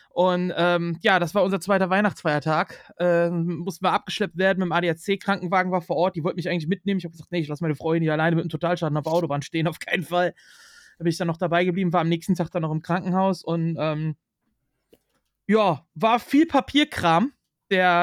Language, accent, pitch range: German, German, 170-200 Hz